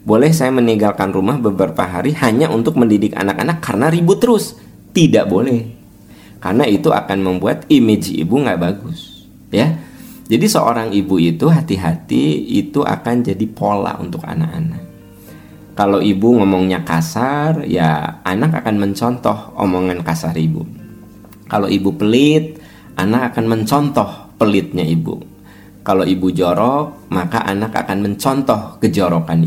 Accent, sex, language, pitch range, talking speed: native, male, Indonesian, 85-115 Hz, 125 wpm